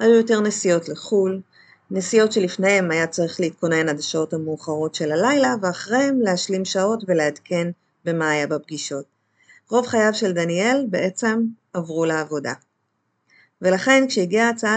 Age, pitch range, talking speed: 30-49, 170-230 Hz, 125 wpm